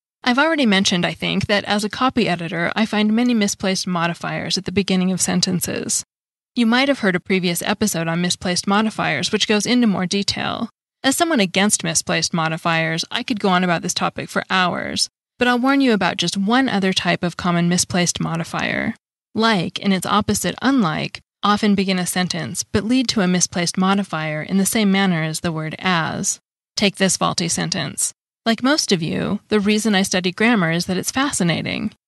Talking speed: 190 wpm